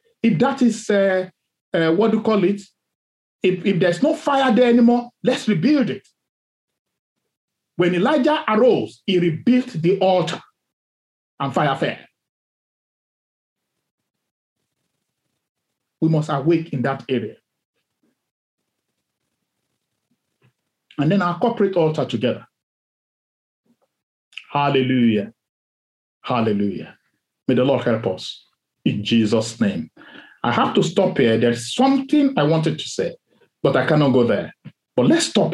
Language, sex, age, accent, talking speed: English, male, 50-69, Nigerian, 120 wpm